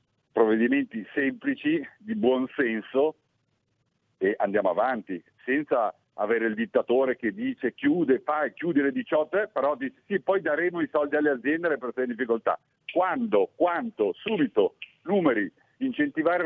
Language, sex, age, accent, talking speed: Italian, male, 50-69, native, 135 wpm